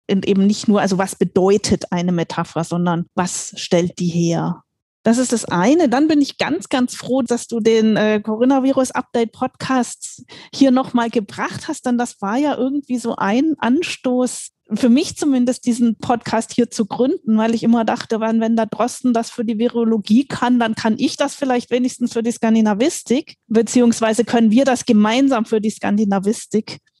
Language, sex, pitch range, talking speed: German, female, 210-245 Hz, 170 wpm